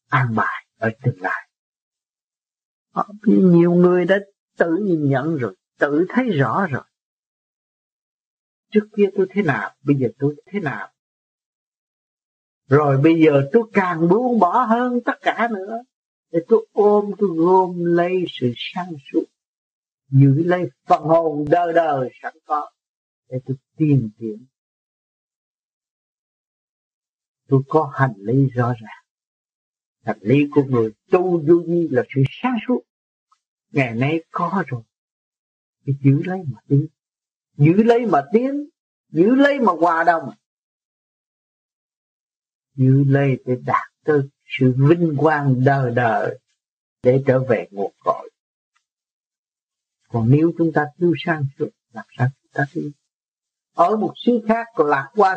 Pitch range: 135-185 Hz